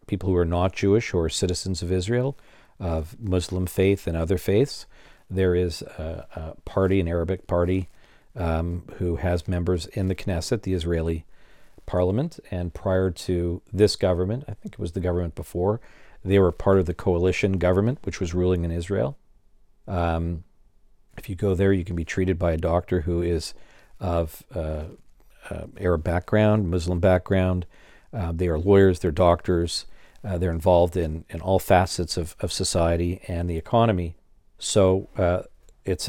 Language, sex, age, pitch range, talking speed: English, male, 50-69, 85-100 Hz, 165 wpm